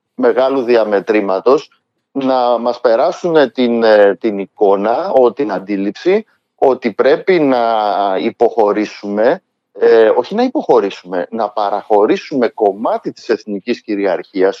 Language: Greek